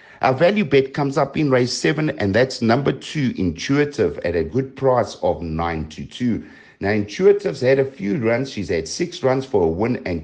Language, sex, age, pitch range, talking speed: English, male, 60-79, 100-140 Hz, 205 wpm